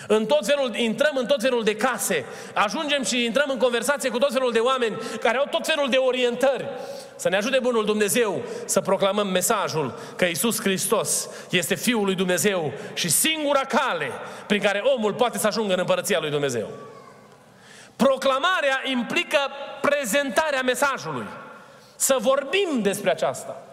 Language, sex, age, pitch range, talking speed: Romanian, male, 30-49, 215-275 Hz, 155 wpm